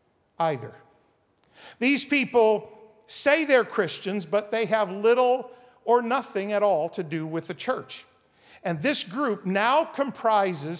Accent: American